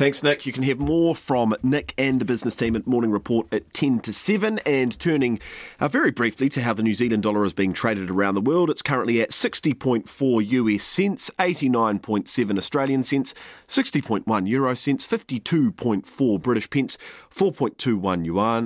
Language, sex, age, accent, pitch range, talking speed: English, male, 40-59, Australian, 110-145 Hz, 160 wpm